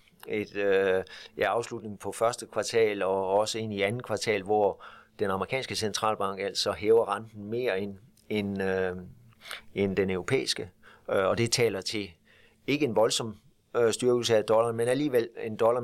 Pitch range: 100-115 Hz